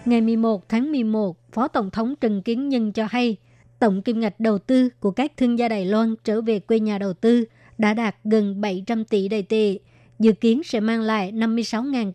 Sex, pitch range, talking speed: male, 210-235 Hz, 205 wpm